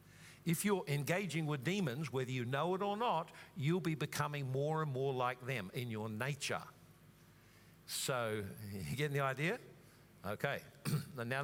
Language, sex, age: English, male, 50-69